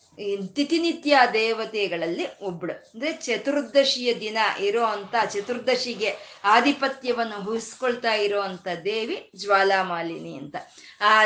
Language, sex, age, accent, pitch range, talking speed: Kannada, female, 20-39, native, 205-275 Hz, 80 wpm